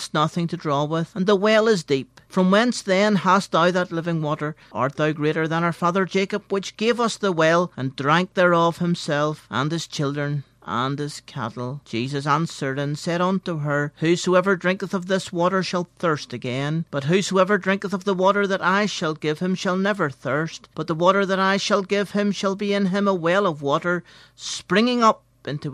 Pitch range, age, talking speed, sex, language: 145-185 Hz, 50-69, 200 wpm, male, English